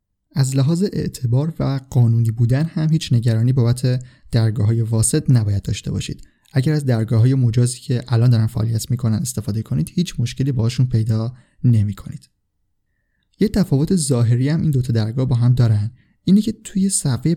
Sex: male